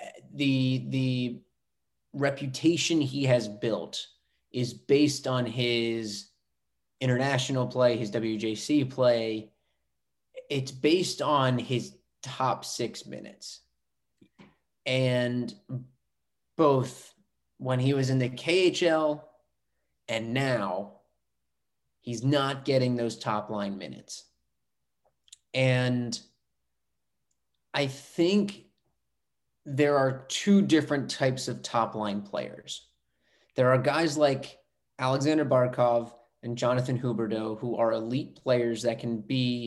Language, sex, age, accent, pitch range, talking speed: English, male, 30-49, American, 115-140 Hz, 100 wpm